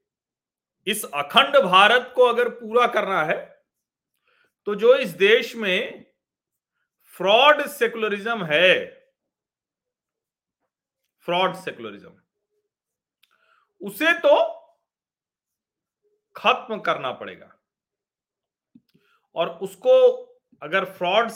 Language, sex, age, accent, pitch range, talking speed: Hindi, male, 40-59, native, 170-250 Hz, 75 wpm